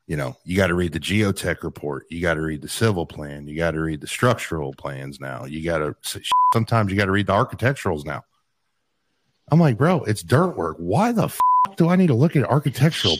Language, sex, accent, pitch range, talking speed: English, male, American, 90-130 Hz, 230 wpm